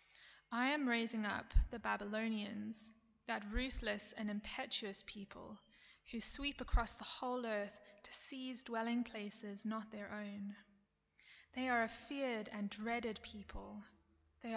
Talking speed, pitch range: 130 wpm, 210-235 Hz